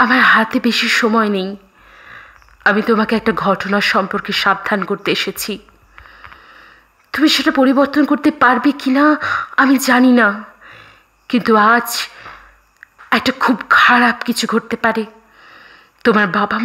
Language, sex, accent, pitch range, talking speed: Bengali, female, native, 220-280 Hz, 115 wpm